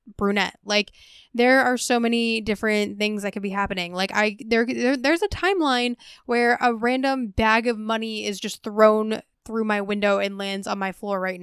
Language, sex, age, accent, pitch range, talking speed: English, female, 10-29, American, 195-240 Hz, 195 wpm